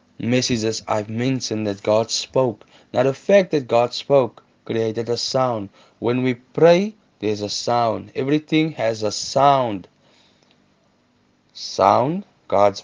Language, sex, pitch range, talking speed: English, male, 105-135 Hz, 125 wpm